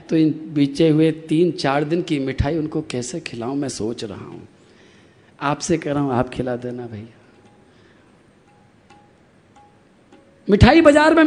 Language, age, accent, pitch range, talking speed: Hindi, 50-69, native, 160-245 Hz, 145 wpm